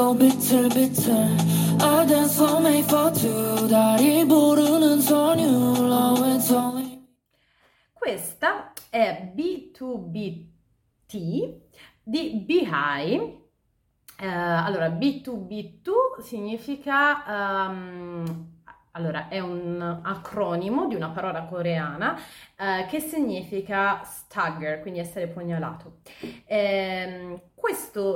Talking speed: 55 wpm